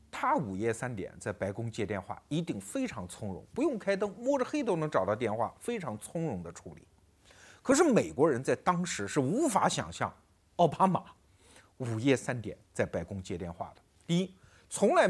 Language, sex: Chinese, male